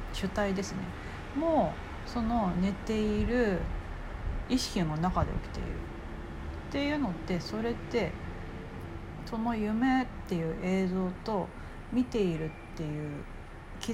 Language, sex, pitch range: Japanese, female, 150-240 Hz